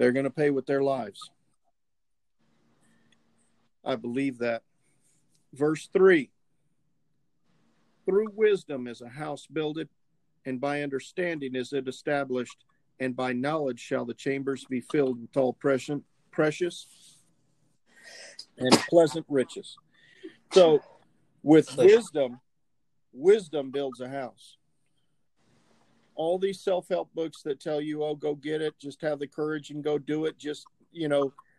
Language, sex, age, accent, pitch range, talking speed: English, male, 50-69, American, 130-155 Hz, 125 wpm